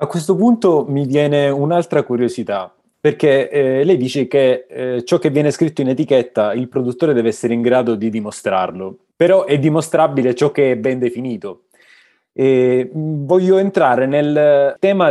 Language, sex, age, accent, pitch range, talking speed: Italian, male, 20-39, native, 120-150 Hz, 155 wpm